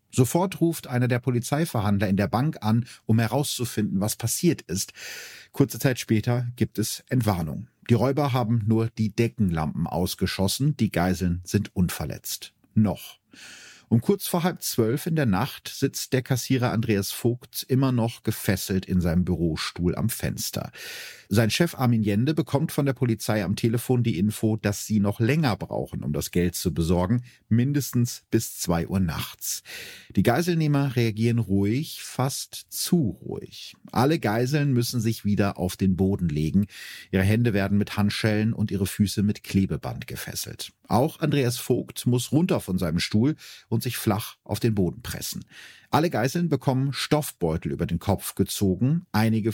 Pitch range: 100-130 Hz